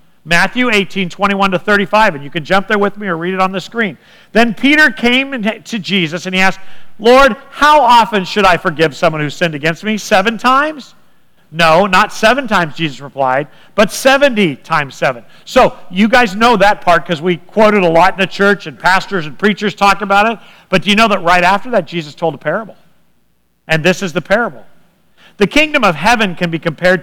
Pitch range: 175-240 Hz